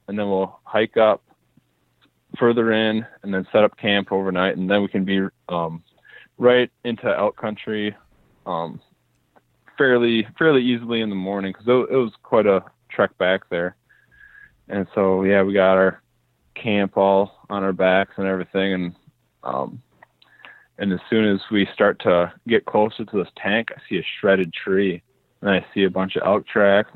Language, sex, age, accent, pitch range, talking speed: English, male, 20-39, American, 95-115 Hz, 175 wpm